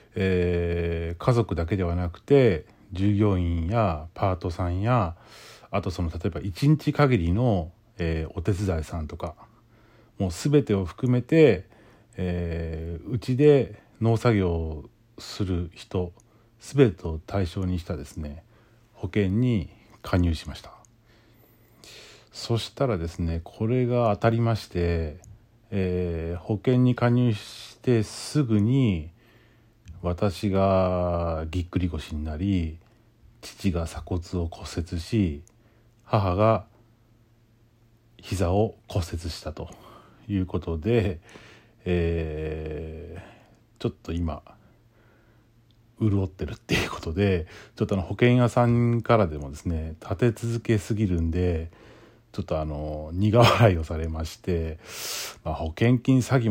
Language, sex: Japanese, male